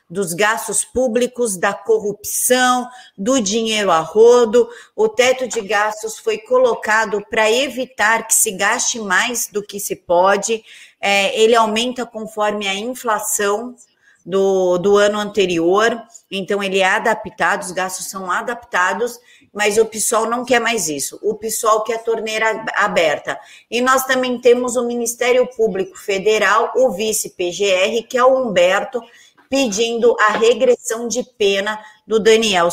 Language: Portuguese